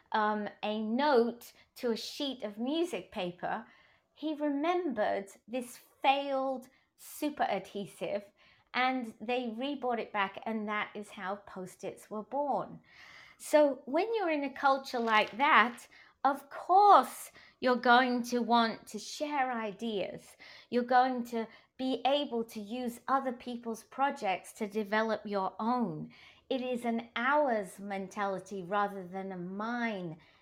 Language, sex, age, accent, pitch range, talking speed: English, female, 30-49, British, 205-260 Hz, 130 wpm